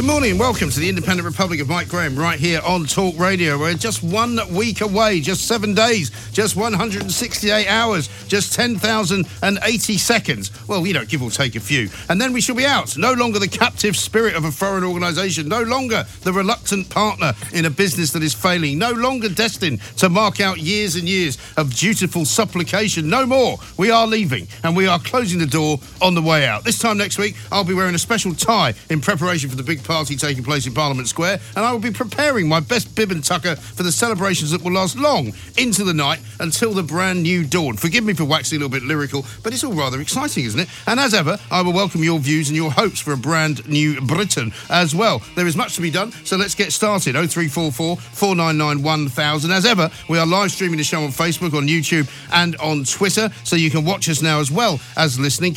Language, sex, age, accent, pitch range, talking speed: English, male, 50-69, British, 155-205 Hz, 225 wpm